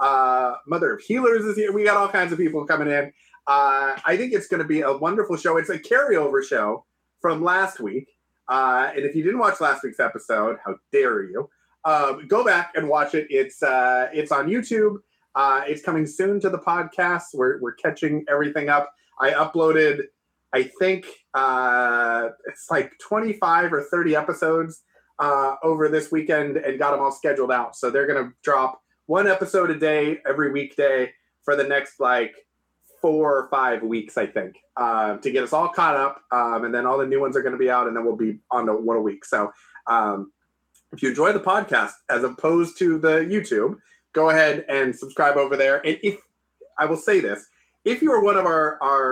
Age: 30-49